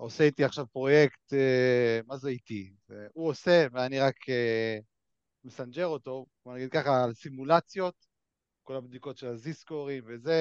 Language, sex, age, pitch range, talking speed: Hebrew, male, 30-49, 125-165 Hz, 145 wpm